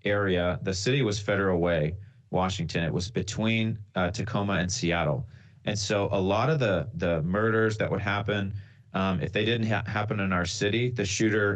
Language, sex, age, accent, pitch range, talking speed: English, male, 30-49, American, 95-110 Hz, 185 wpm